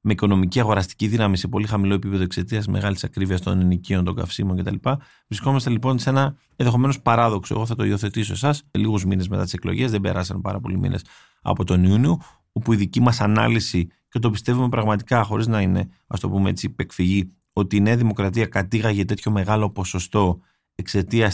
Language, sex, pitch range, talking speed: Greek, male, 95-120 Hz, 185 wpm